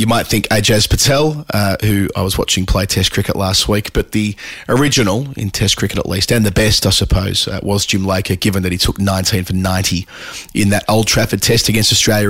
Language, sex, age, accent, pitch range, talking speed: English, male, 30-49, Australian, 95-120 Hz, 225 wpm